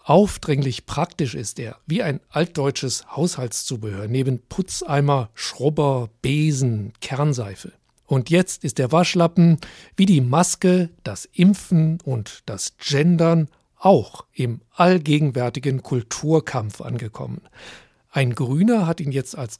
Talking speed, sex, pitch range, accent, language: 115 wpm, male, 125-165 Hz, German, German